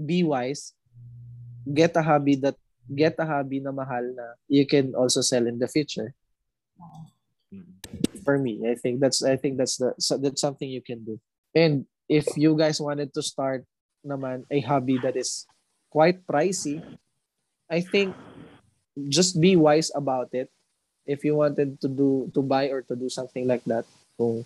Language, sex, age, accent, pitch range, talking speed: Filipino, male, 20-39, native, 125-150 Hz, 165 wpm